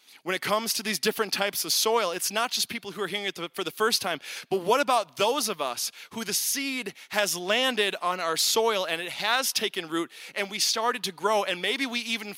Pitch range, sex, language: 155-210 Hz, male, English